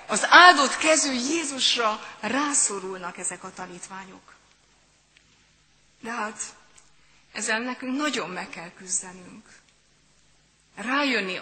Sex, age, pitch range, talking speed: female, 30-49, 190-265 Hz, 90 wpm